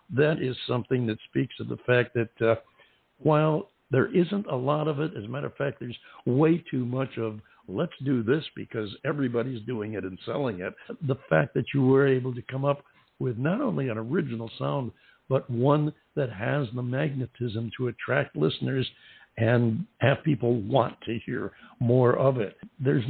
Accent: American